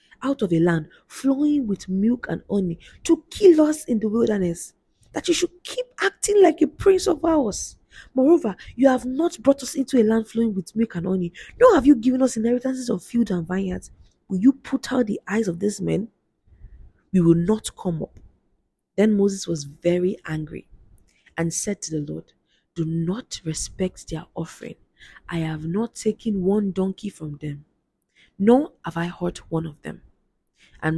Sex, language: female, English